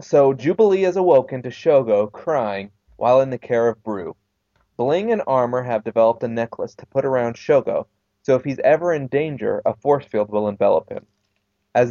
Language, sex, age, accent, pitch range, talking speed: English, male, 20-39, American, 105-145 Hz, 185 wpm